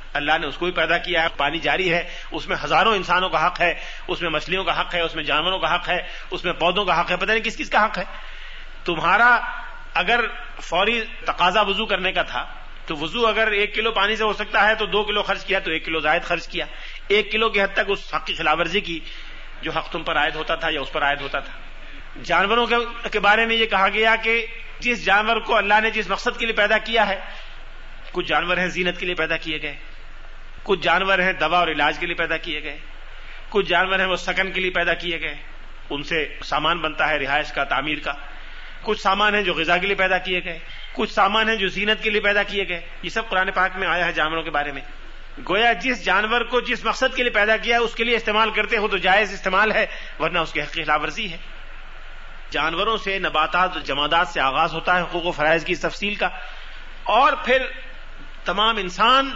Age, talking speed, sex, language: 40-59, 235 wpm, male, Urdu